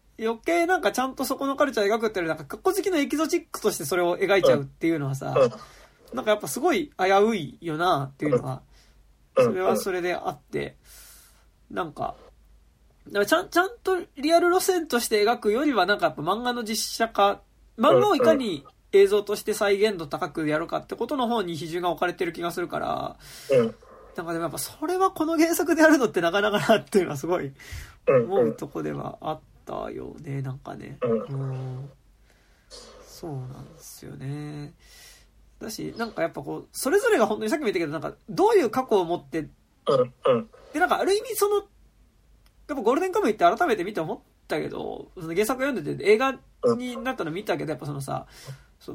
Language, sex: Japanese, male